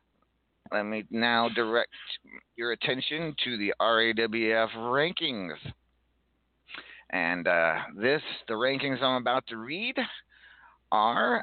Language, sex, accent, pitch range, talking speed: English, male, American, 120-160 Hz, 105 wpm